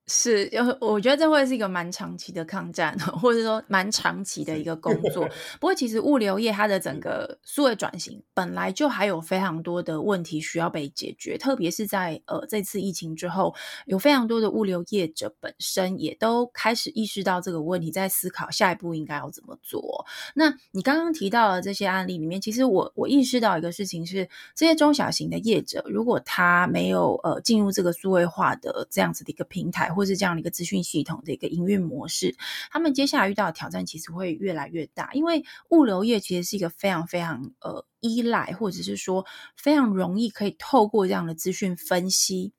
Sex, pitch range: female, 170-225 Hz